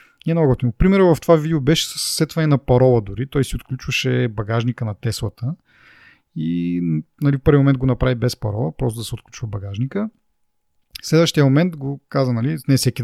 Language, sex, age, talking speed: Bulgarian, male, 30-49, 170 wpm